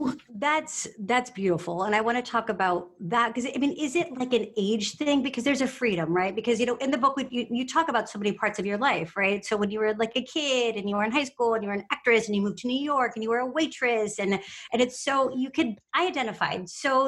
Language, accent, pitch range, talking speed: English, American, 210-270 Hz, 280 wpm